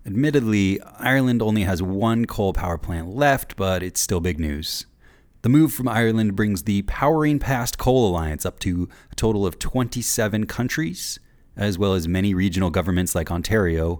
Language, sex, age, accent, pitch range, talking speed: English, male, 30-49, American, 90-120 Hz, 165 wpm